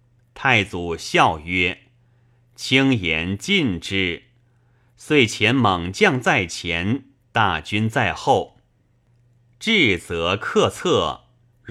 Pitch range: 105-125 Hz